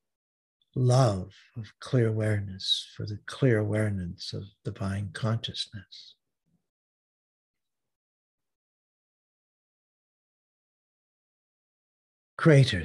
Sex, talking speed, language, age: male, 55 wpm, English, 60-79